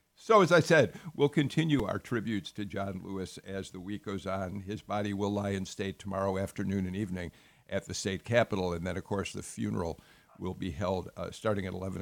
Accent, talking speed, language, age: American, 215 wpm, English, 50-69